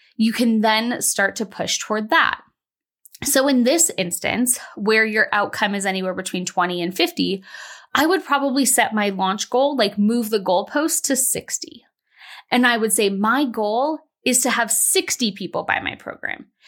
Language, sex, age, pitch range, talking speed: English, female, 20-39, 205-275 Hz, 175 wpm